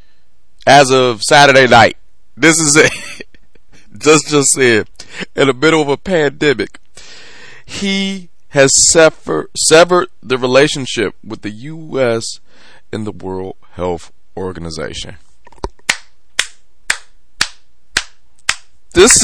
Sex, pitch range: male, 105-165 Hz